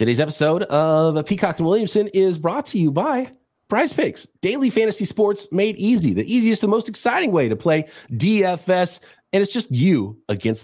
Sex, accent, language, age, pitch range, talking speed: male, American, English, 30-49, 115-185 Hz, 180 wpm